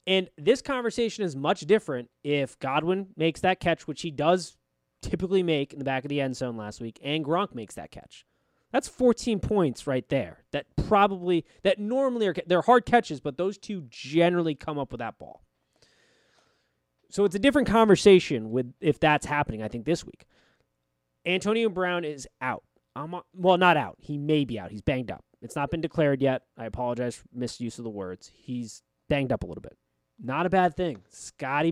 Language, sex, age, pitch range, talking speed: English, male, 20-39, 120-180 Hz, 195 wpm